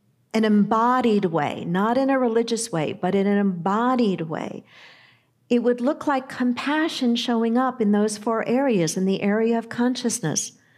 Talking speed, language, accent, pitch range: 160 wpm, English, American, 185-230 Hz